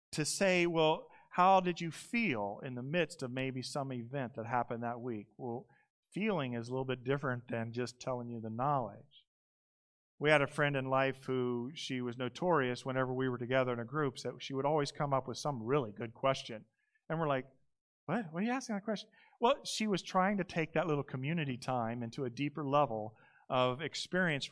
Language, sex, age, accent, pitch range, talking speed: English, male, 40-59, American, 125-175 Hz, 205 wpm